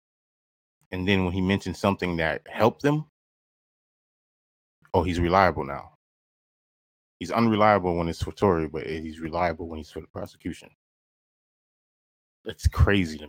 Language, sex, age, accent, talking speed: English, male, 30-49, American, 135 wpm